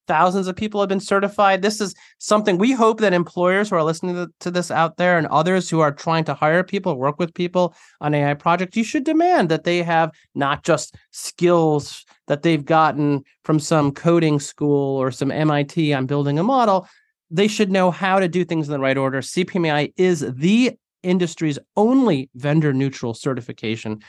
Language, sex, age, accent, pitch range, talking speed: English, male, 30-49, American, 140-180 Hz, 190 wpm